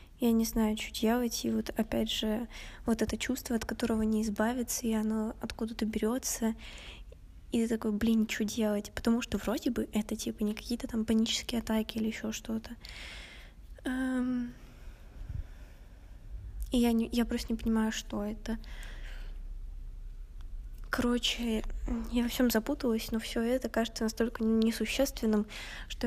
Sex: female